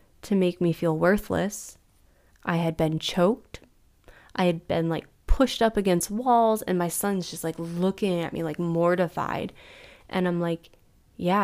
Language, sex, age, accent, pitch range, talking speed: English, female, 20-39, American, 165-195 Hz, 165 wpm